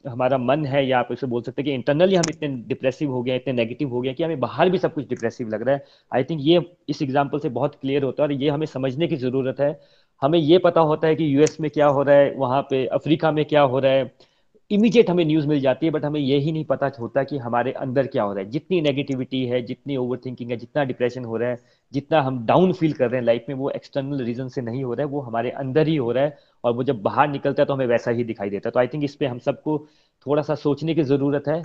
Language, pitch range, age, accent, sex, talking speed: Hindi, 130-155 Hz, 30-49, native, male, 185 wpm